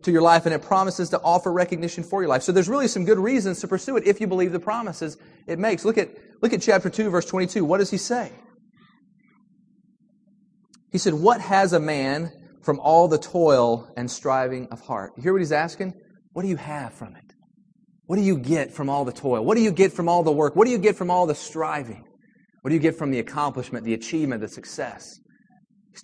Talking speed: 235 wpm